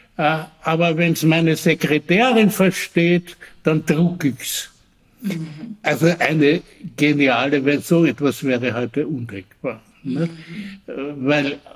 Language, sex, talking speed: German, male, 95 wpm